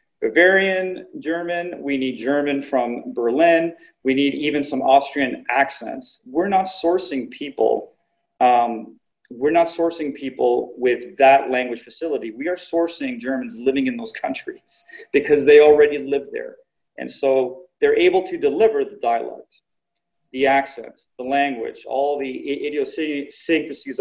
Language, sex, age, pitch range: English, male, 30-49, 130-205 Hz